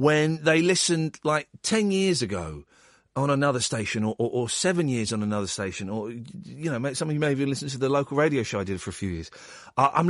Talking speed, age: 240 wpm, 40-59